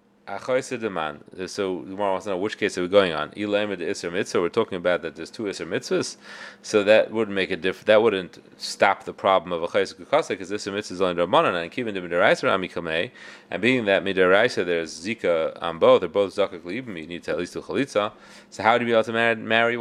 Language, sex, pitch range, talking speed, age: English, male, 100-135 Hz, 210 wpm, 30-49